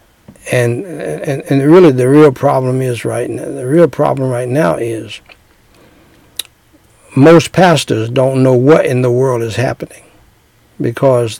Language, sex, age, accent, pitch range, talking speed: English, male, 60-79, American, 120-145 Hz, 140 wpm